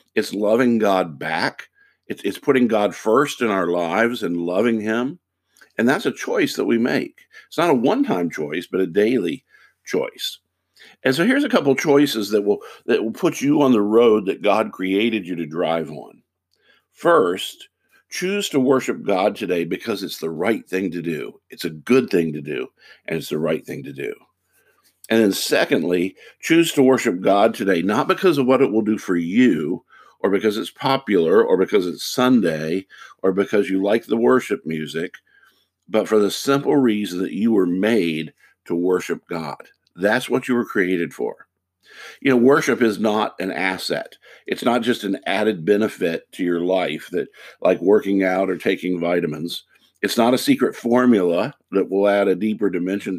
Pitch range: 90-125 Hz